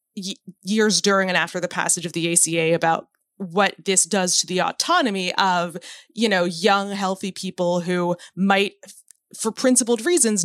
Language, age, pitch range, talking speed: English, 20-39, 180-215 Hz, 155 wpm